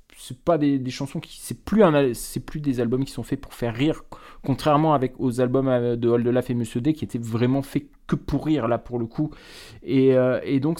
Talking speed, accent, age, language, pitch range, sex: 245 wpm, French, 20-39, French, 120-140 Hz, male